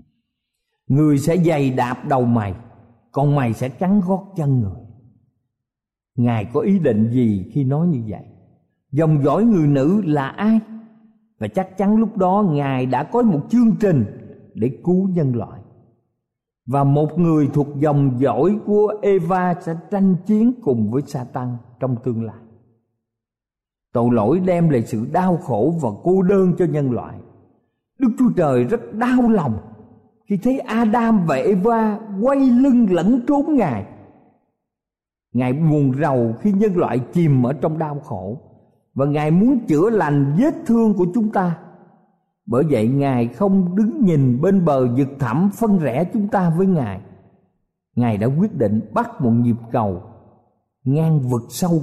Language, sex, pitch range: Vietnamese, male, 120-195 Hz